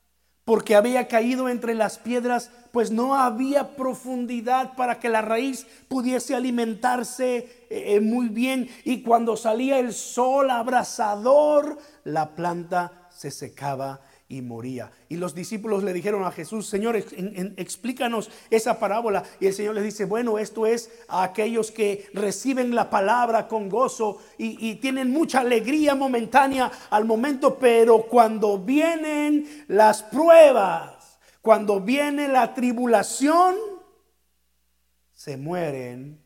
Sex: male